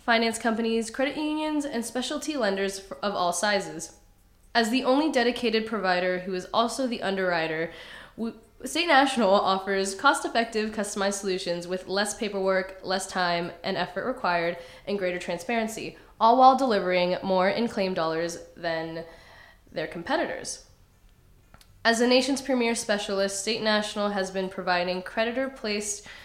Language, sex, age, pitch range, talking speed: English, female, 10-29, 185-235 Hz, 130 wpm